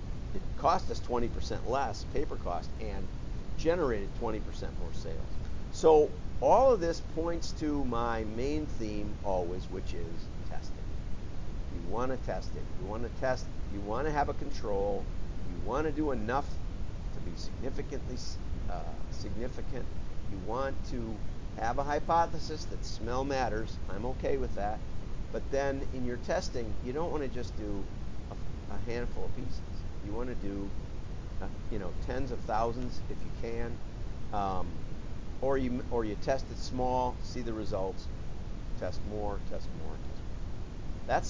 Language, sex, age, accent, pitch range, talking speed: English, male, 50-69, American, 95-125 Hz, 160 wpm